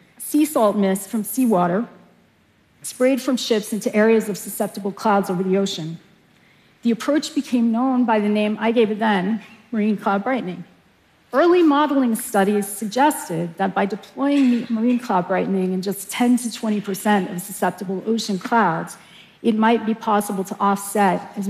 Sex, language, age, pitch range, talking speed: female, Arabic, 40-59, 190-230 Hz, 160 wpm